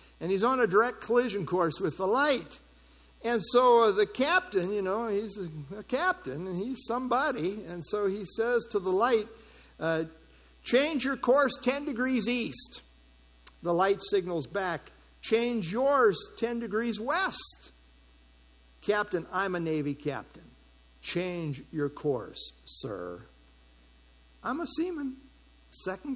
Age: 60-79